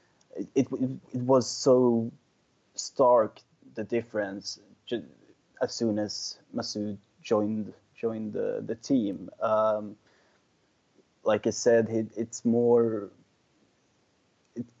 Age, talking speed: 20-39, 95 wpm